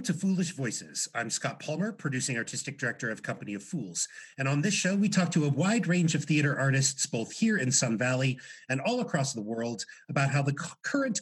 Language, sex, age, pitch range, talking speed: English, male, 40-59, 125-185 Hz, 220 wpm